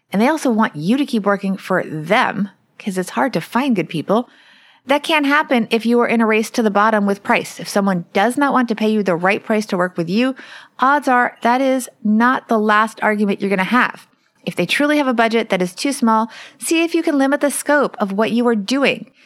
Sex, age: female, 30-49